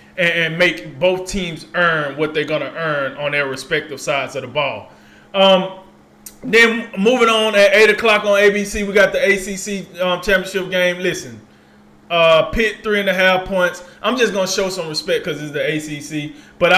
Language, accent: English, American